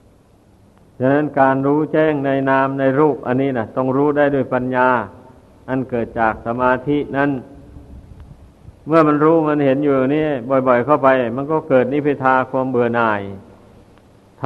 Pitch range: 115-145 Hz